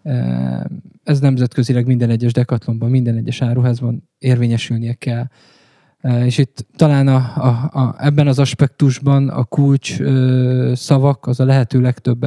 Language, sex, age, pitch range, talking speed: Hungarian, male, 20-39, 130-140 Hz, 130 wpm